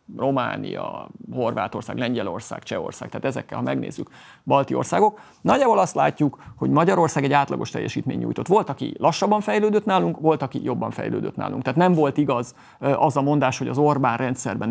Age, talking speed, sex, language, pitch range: 30-49, 165 wpm, male, Hungarian, 130-170 Hz